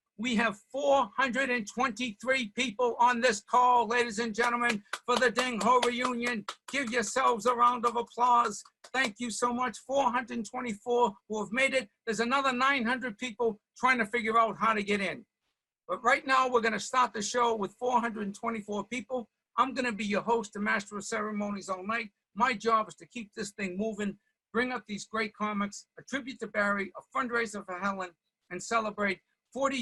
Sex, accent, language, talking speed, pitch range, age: male, American, English, 175 wpm, 195-240 Hz, 60-79